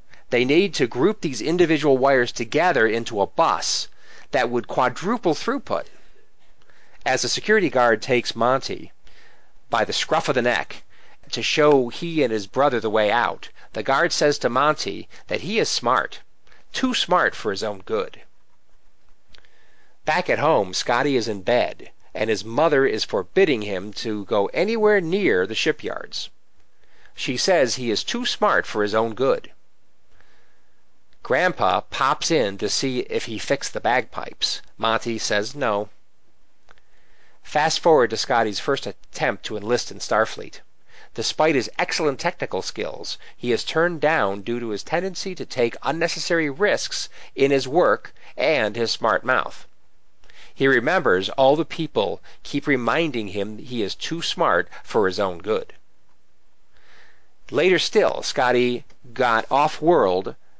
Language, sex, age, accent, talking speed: English, male, 40-59, American, 145 wpm